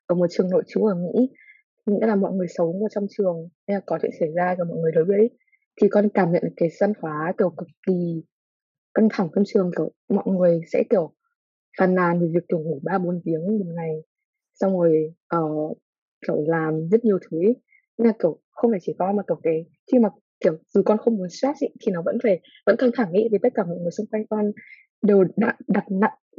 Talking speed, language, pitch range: 230 wpm, Vietnamese, 180-225 Hz